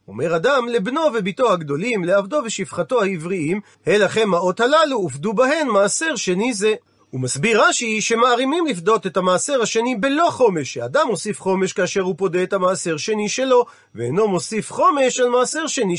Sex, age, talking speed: male, 40-59, 135 wpm